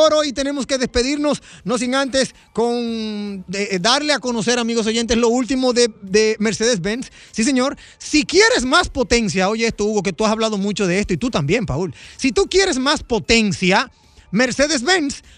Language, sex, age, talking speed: Spanish, male, 30-49, 175 wpm